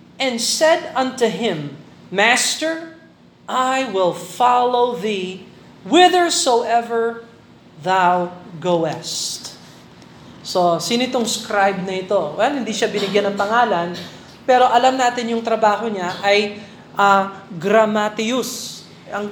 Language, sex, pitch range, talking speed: Filipino, male, 185-235 Hz, 105 wpm